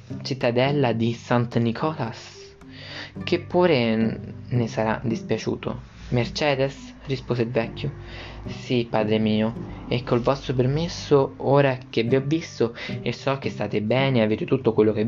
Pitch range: 110-135 Hz